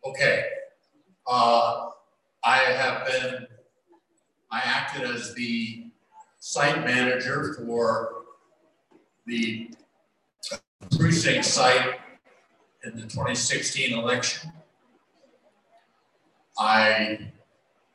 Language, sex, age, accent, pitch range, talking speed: English, male, 50-69, American, 115-165 Hz, 75 wpm